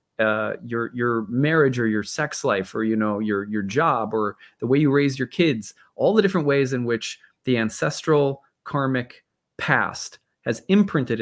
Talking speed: 175 wpm